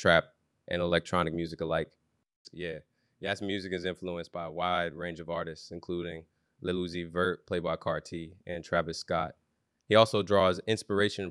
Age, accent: 20-39, American